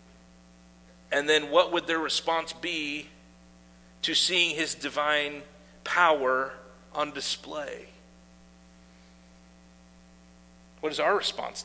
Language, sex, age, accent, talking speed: English, male, 50-69, American, 95 wpm